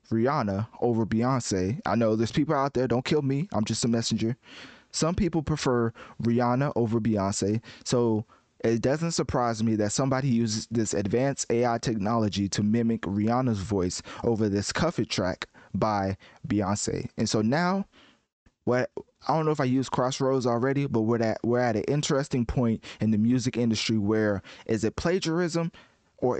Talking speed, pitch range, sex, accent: 165 wpm, 110-130 Hz, male, American